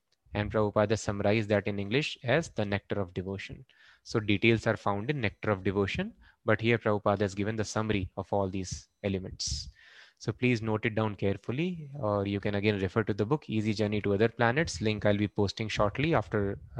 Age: 20-39